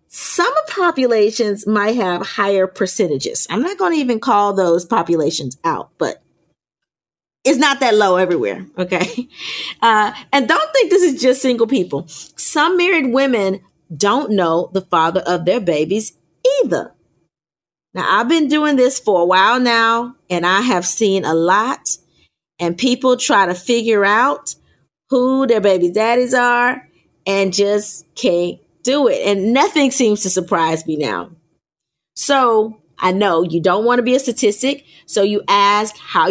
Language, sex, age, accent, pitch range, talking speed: English, female, 30-49, American, 180-255 Hz, 155 wpm